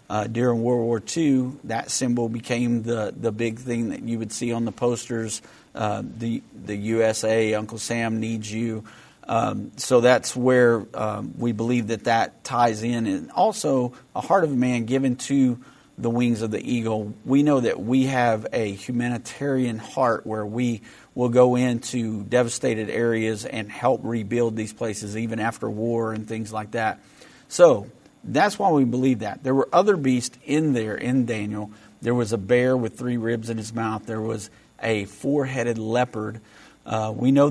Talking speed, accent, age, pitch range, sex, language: 175 wpm, American, 40-59, 110-125 Hz, male, English